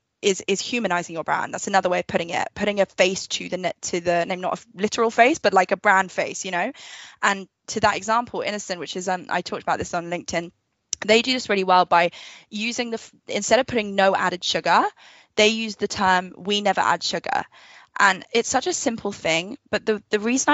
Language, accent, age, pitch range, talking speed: English, British, 10-29, 185-225 Hz, 220 wpm